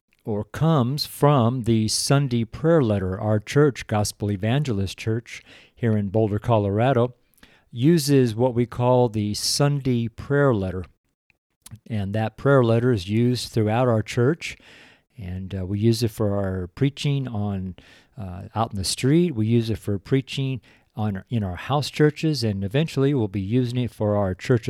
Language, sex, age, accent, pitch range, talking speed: English, male, 50-69, American, 105-135 Hz, 160 wpm